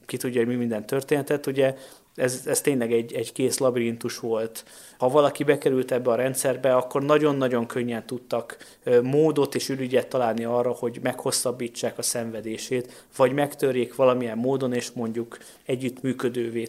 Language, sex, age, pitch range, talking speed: Hungarian, male, 20-39, 120-145 Hz, 145 wpm